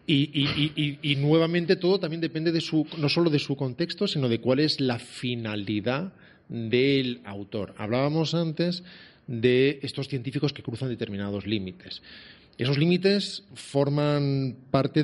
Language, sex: Spanish, male